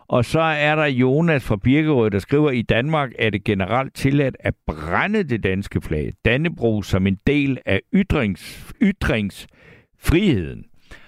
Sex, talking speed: male, 145 wpm